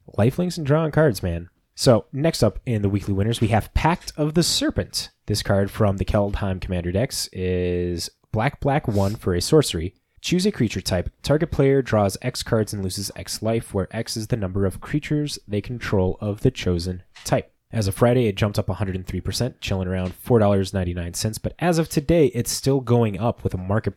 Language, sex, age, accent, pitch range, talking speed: English, male, 20-39, American, 90-120 Hz, 200 wpm